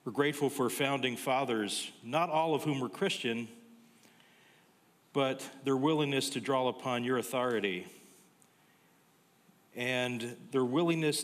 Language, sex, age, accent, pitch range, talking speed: English, male, 40-59, American, 115-140 Hz, 115 wpm